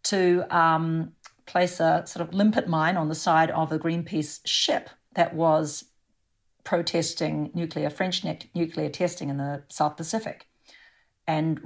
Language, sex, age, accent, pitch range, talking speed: English, female, 40-59, Australian, 155-180 Hz, 140 wpm